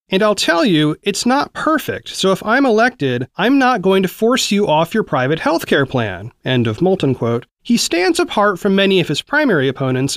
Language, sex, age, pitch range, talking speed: English, male, 30-49, 150-215 Hz, 210 wpm